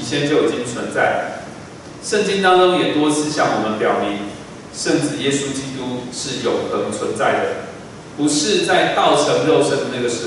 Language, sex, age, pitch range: Chinese, male, 30-49, 145-205 Hz